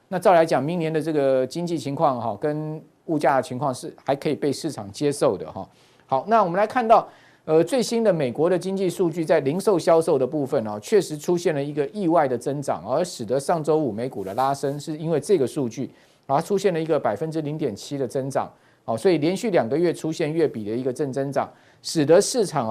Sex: male